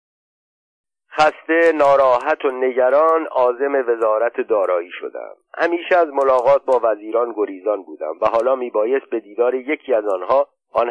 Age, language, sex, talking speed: 50-69, Persian, male, 130 wpm